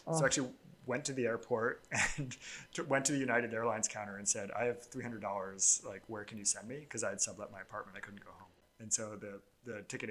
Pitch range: 105-120 Hz